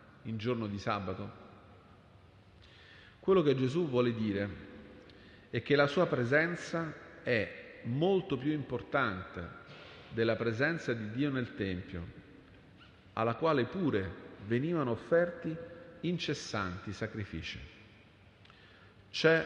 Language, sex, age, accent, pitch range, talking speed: Italian, male, 40-59, native, 100-145 Hz, 100 wpm